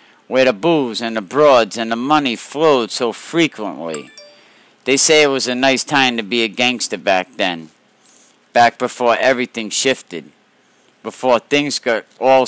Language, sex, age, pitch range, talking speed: English, male, 50-69, 105-125 Hz, 160 wpm